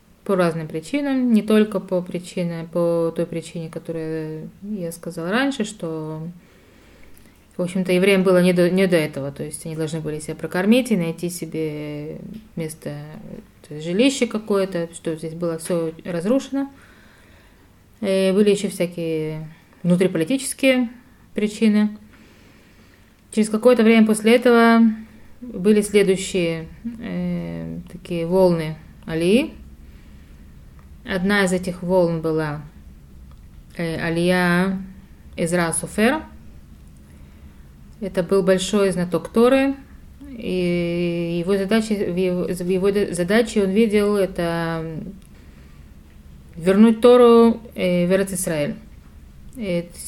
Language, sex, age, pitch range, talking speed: Russian, female, 20-39, 160-205 Hz, 100 wpm